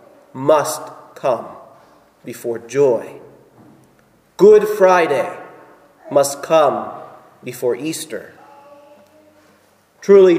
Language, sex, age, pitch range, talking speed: English, male, 40-59, 140-215 Hz, 65 wpm